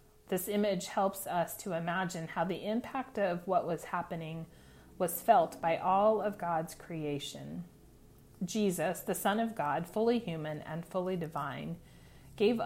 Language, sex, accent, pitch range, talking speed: English, female, American, 160-195 Hz, 145 wpm